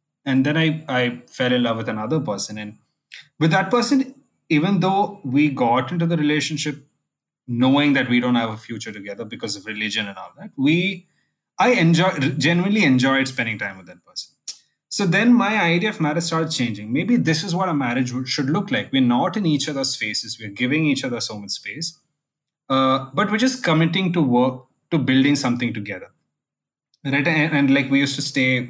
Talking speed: 195 wpm